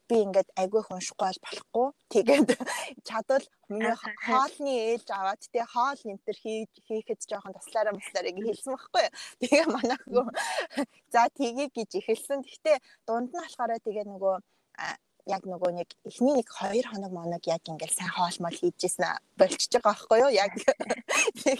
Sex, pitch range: female, 195-265 Hz